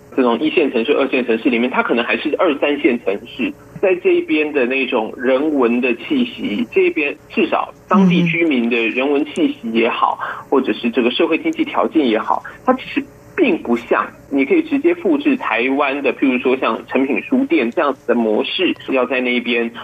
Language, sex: Chinese, male